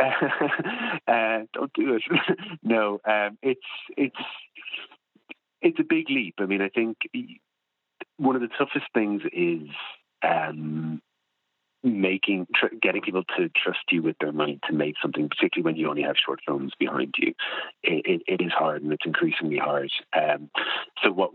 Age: 40-59